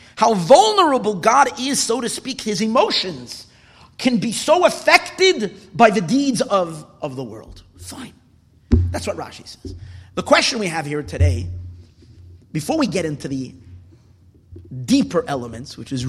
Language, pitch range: English, 140-220 Hz